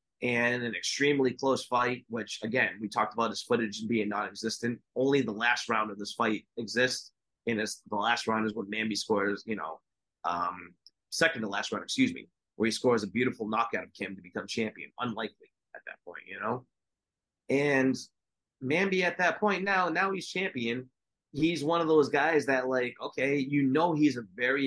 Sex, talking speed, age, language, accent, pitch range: male, 190 wpm, 30-49, English, American, 110-135 Hz